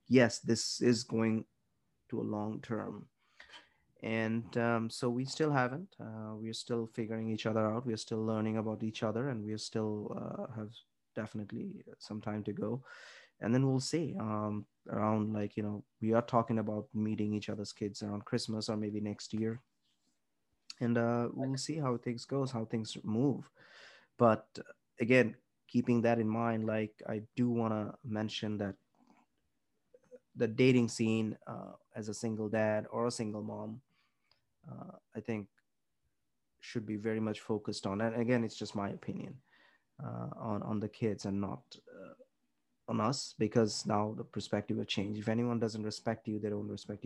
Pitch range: 105-120 Hz